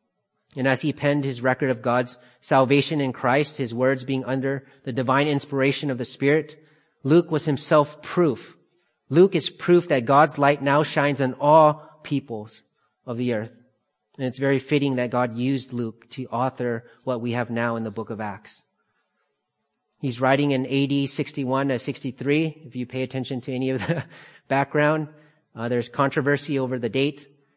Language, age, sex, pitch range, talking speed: English, 30-49, male, 120-140 Hz, 175 wpm